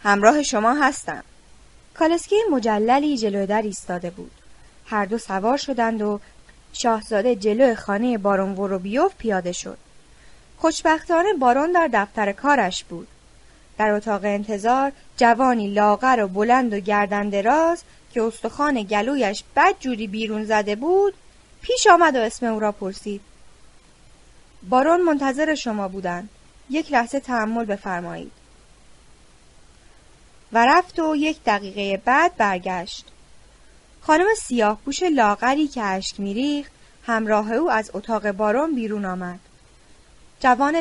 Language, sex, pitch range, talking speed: Persian, female, 205-290 Hz, 120 wpm